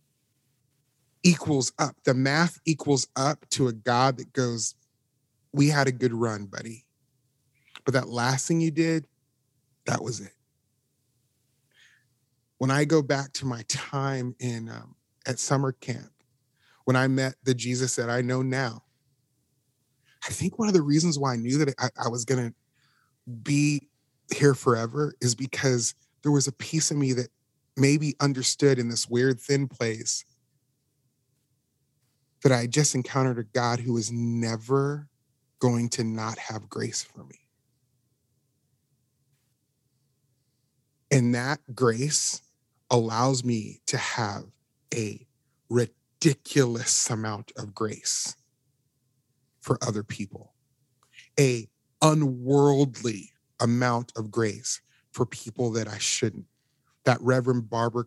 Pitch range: 120-135 Hz